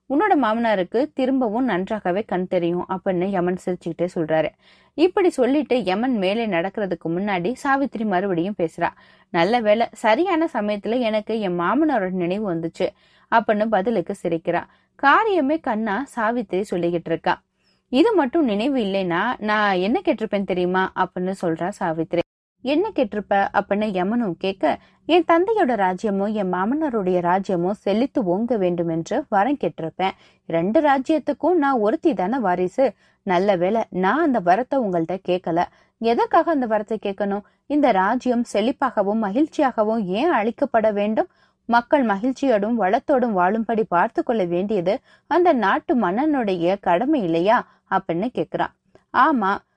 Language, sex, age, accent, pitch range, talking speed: Tamil, female, 20-39, native, 185-270 Hz, 100 wpm